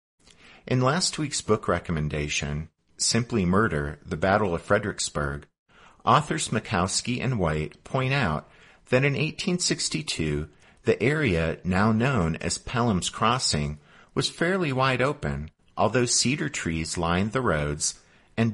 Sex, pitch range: male, 80-115 Hz